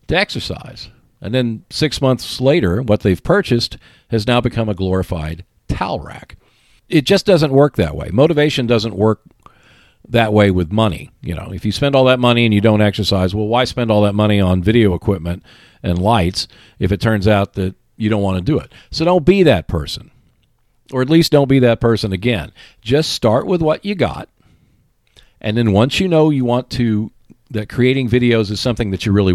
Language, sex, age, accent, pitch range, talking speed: English, male, 50-69, American, 100-130 Hz, 200 wpm